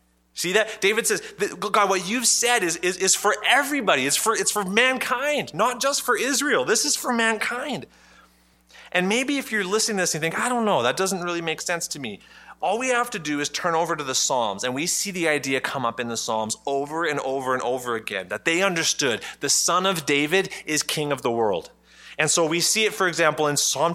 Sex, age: male, 30-49